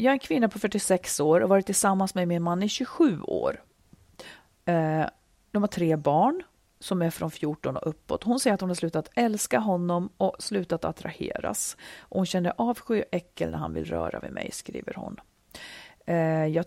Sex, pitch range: female, 160-195 Hz